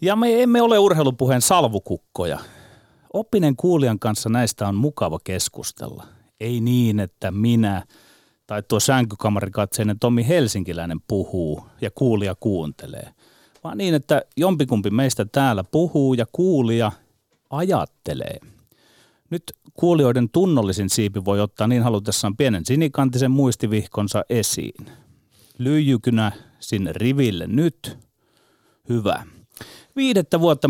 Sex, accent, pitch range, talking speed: male, native, 105-145 Hz, 110 wpm